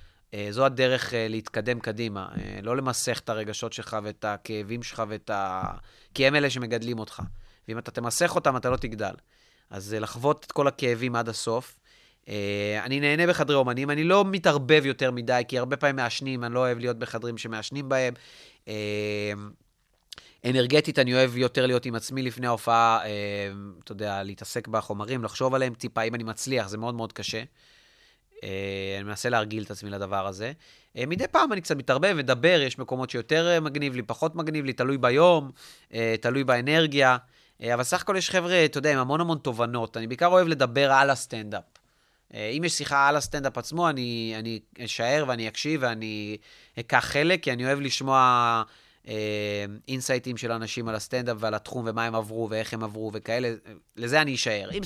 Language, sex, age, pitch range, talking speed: Hebrew, male, 30-49, 110-135 Hz, 185 wpm